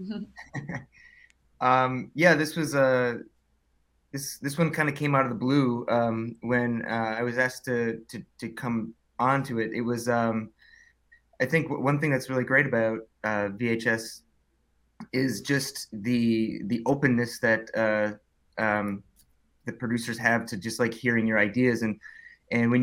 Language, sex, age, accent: English, male, 20-39, American